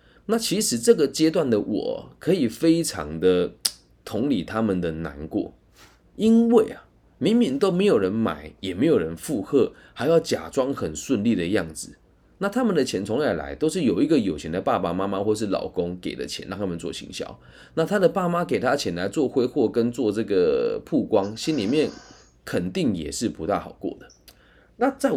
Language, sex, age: Chinese, male, 20-39